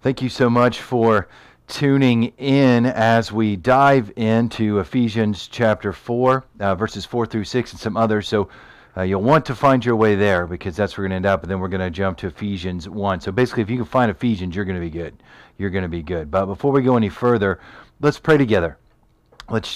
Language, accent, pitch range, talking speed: English, American, 95-115 Hz, 230 wpm